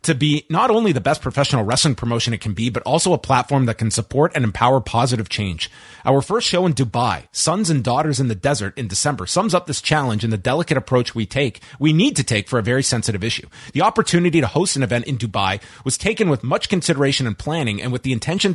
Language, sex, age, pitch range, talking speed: English, male, 30-49, 120-160 Hz, 240 wpm